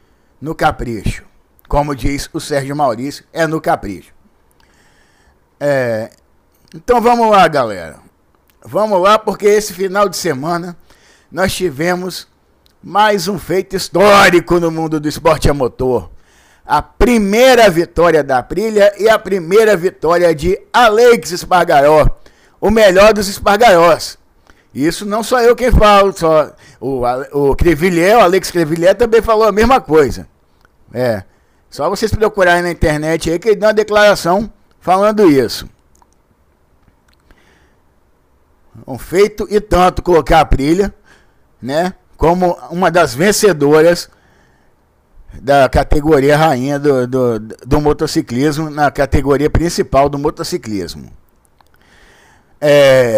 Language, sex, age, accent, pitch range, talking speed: Portuguese, male, 60-79, Brazilian, 130-200 Hz, 120 wpm